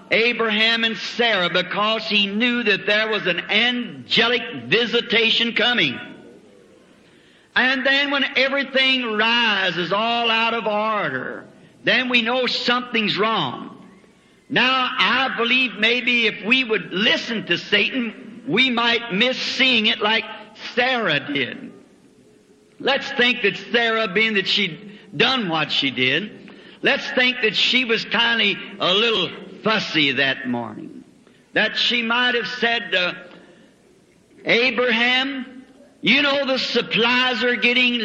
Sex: male